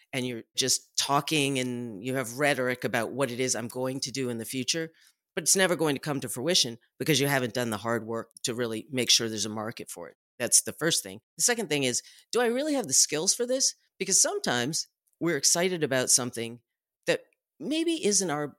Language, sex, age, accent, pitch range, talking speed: English, female, 40-59, American, 120-155 Hz, 225 wpm